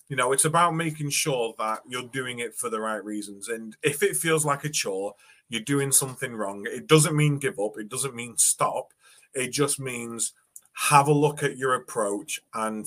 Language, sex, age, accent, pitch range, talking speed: English, male, 30-49, British, 115-155 Hz, 205 wpm